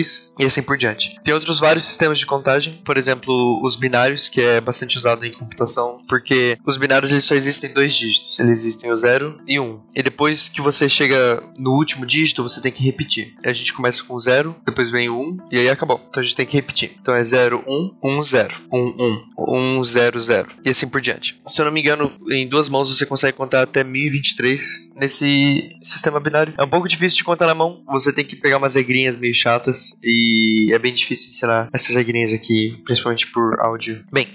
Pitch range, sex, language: 120-145 Hz, male, Portuguese